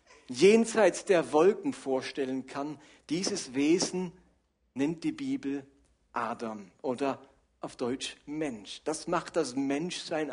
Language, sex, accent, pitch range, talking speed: German, male, German, 160-225 Hz, 110 wpm